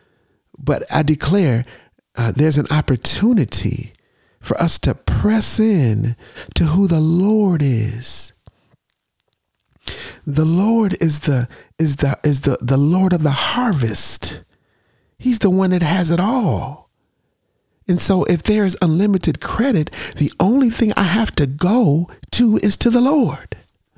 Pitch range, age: 145-210 Hz, 40-59